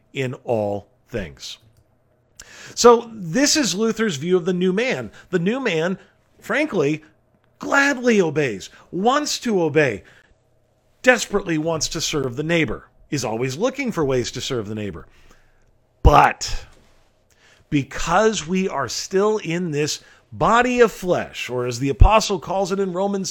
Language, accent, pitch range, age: English, American, 125-195 Hz, 40-59